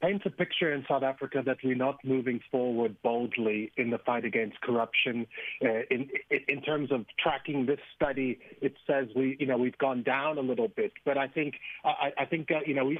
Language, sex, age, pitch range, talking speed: English, male, 40-59, 130-165 Hz, 210 wpm